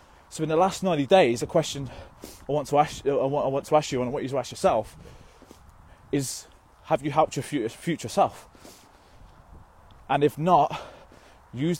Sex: male